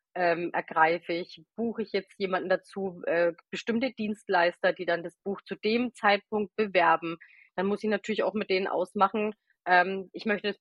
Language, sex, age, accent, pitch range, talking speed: German, female, 30-49, German, 185-225 Hz, 175 wpm